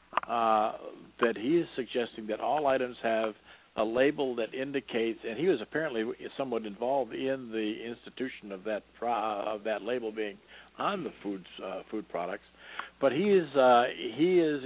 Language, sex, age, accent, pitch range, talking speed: English, male, 60-79, American, 105-130 Hz, 165 wpm